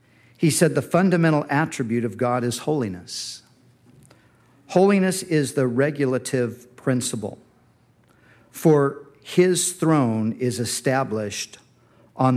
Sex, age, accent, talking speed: male, 50-69, American, 95 wpm